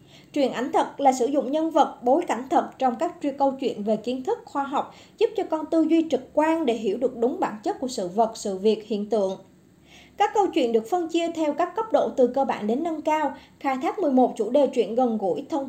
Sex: male